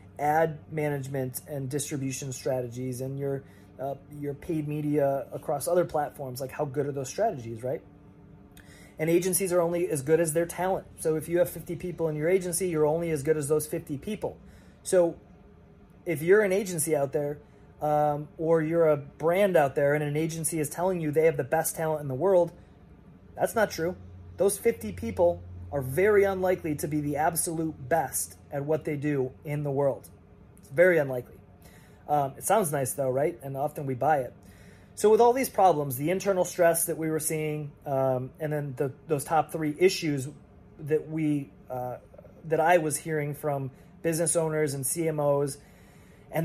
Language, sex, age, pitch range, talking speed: English, male, 30-49, 140-170 Hz, 185 wpm